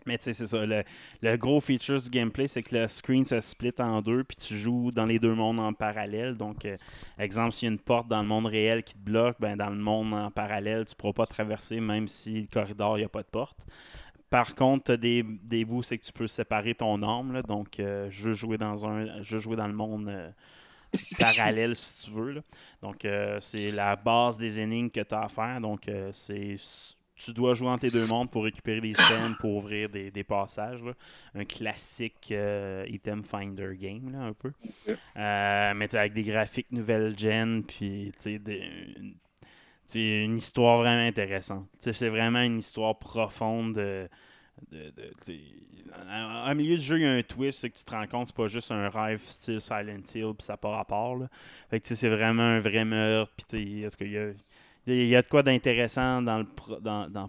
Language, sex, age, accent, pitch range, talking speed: English, male, 20-39, Canadian, 105-120 Hz, 215 wpm